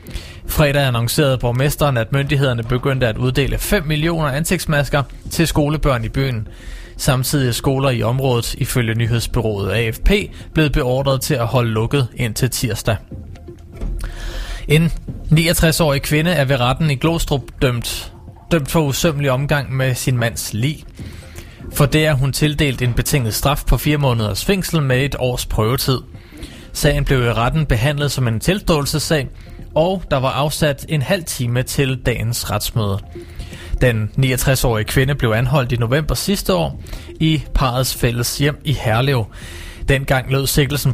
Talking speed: 145 wpm